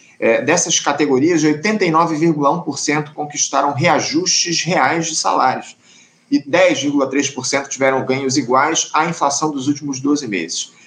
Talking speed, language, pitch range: 110 wpm, Portuguese, 140-175 Hz